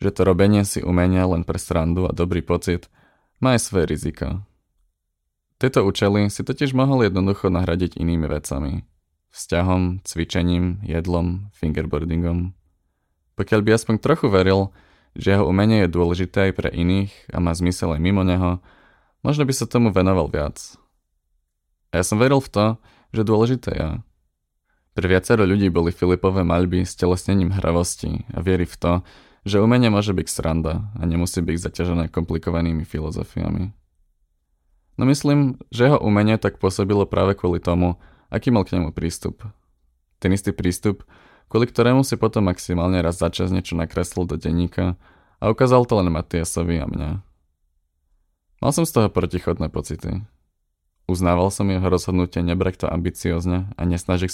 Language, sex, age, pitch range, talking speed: Czech, male, 20-39, 85-100 Hz, 155 wpm